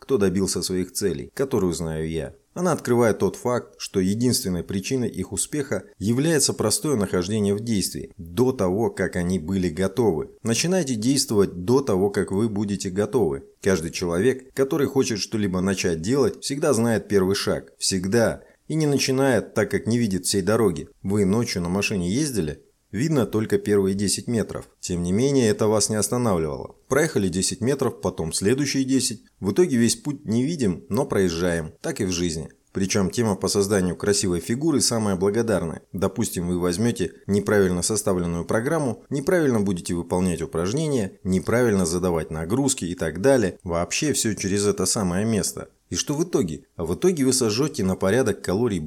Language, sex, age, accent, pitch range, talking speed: Russian, male, 30-49, native, 90-120 Hz, 160 wpm